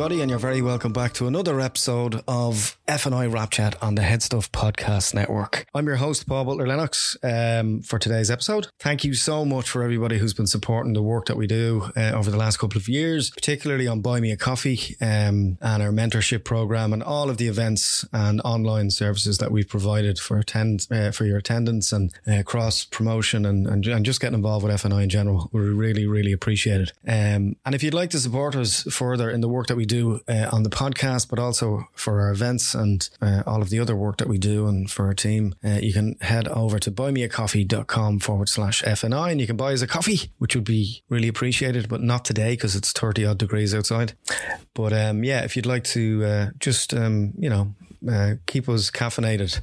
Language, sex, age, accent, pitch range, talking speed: English, male, 20-39, Irish, 105-120 Hz, 215 wpm